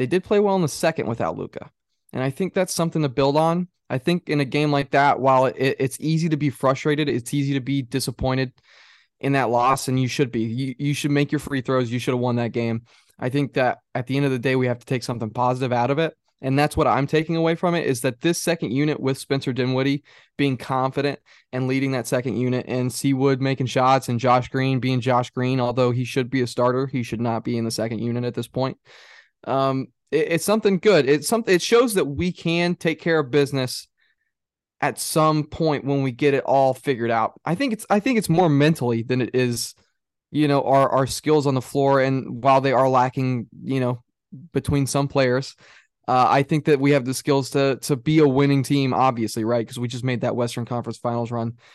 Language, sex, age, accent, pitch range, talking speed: English, male, 20-39, American, 125-145 Hz, 235 wpm